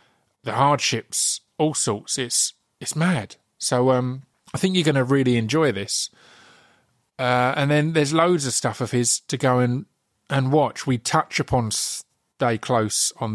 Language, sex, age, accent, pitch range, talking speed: English, male, 30-49, British, 115-140 Hz, 165 wpm